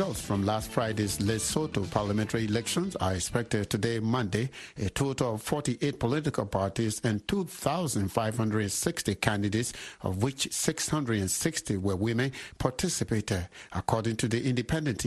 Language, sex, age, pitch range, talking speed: English, male, 60-79, 110-145 Hz, 120 wpm